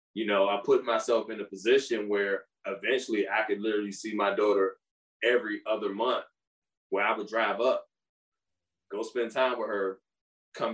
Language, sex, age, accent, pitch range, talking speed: English, male, 20-39, American, 115-155 Hz, 170 wpm